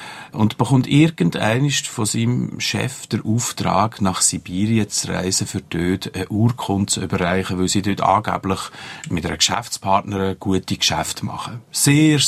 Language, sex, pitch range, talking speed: German, male, 95-120 Hz, 145 wpm